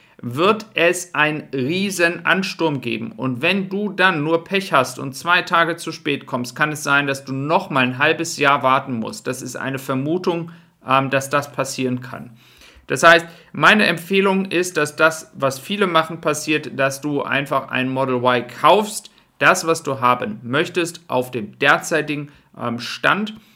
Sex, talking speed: male, 165 wpm